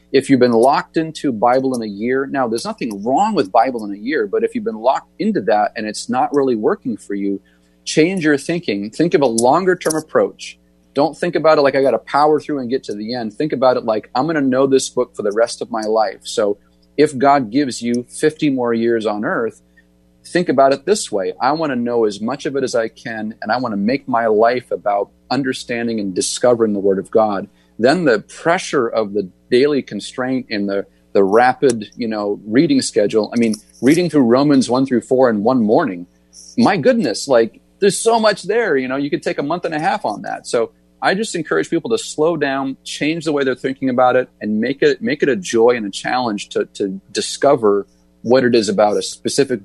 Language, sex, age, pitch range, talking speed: English, male, 30-49, 100-145 Hz, 230 wpm